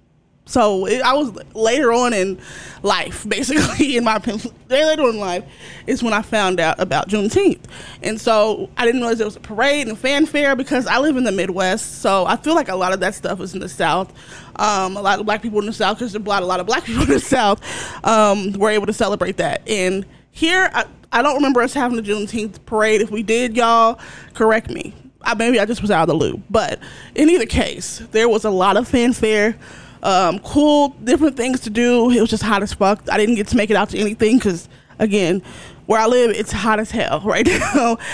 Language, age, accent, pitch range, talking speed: English, 20-39, American, 205-255 Hz, 225 wpm